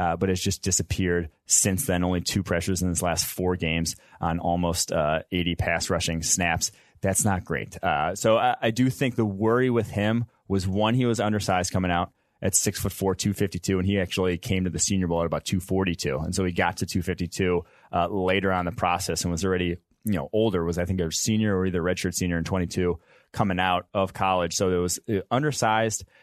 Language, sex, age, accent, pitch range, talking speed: English, male, 30-49, American, 90-100 Hz, 235 wpm